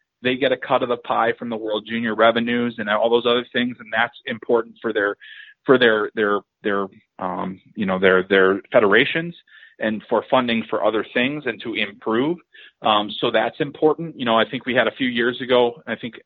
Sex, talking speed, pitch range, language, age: male, 210 wpm, 110-135 Hz, English, 30-49